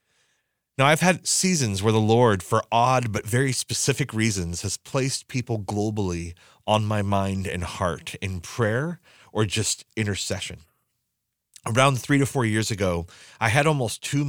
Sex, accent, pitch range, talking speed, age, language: male, American, 100-125 Hz, 155 wpm, 30-49, English